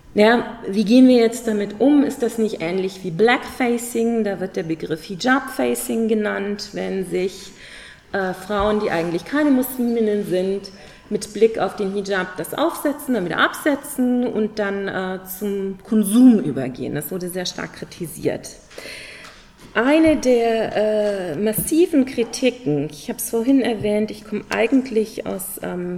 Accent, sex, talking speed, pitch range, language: German, female, 145 wpm, 190-245 Hz, German